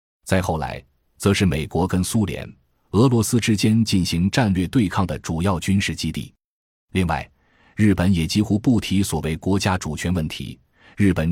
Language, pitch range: Chinese, 80-110 Hz